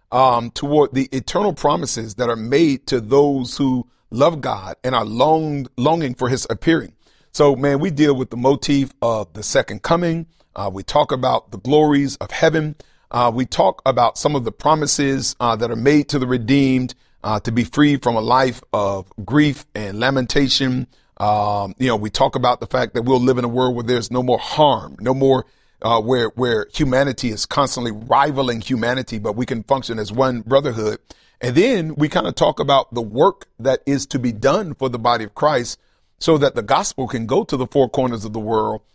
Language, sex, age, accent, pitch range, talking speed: English, male, 40-59, American, 120-145 Hz, 205 wpm